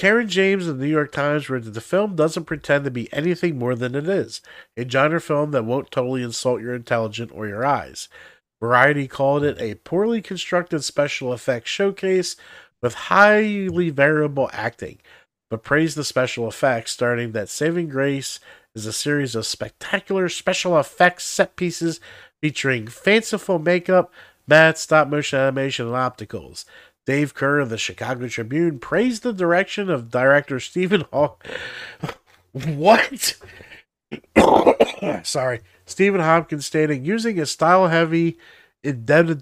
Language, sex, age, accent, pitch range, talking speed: English, male, 50-69, American, 120-165 Hz, 140 wpm